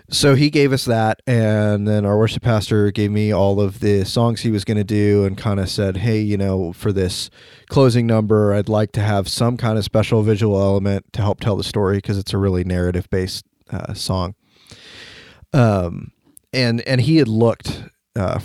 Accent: American